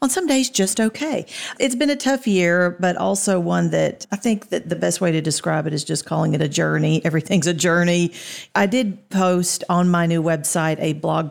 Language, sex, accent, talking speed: English, female, American, 220 wpm